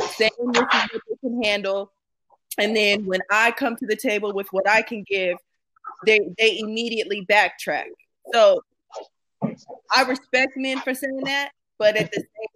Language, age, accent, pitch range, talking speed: English, 20-39, American, 210-265 Hz, 160 wpm